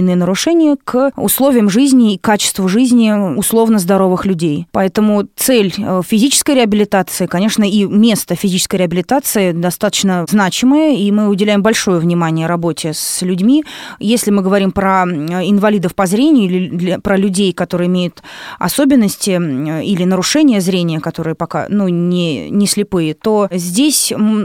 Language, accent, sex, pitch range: Russian, native, female, 180-225 Hz